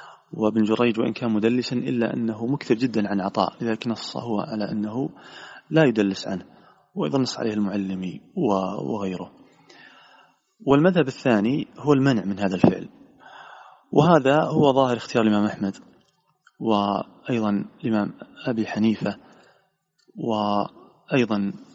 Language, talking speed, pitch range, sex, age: Arabic, 115 wpm, 105-140 Hz, male, 30-49